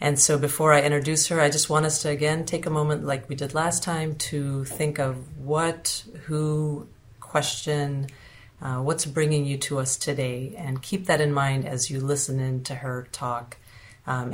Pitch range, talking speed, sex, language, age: 135-155 Hz, 195 wpm, female, English, 40-59